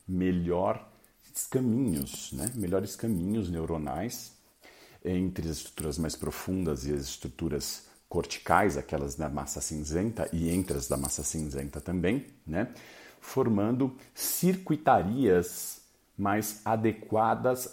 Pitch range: 80-110 Hz